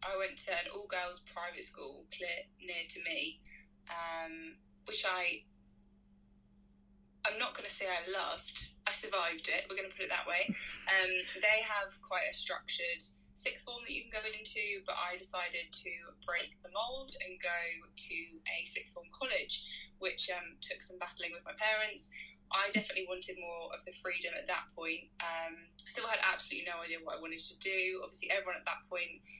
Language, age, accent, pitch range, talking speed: English, 10-29, British, 170-195 Hz, 190 wpm